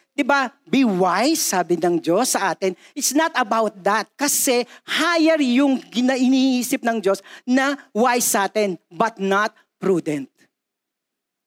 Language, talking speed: Filipino, 130 wpm